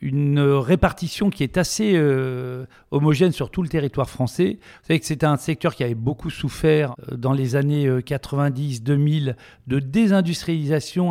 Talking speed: 155 wpm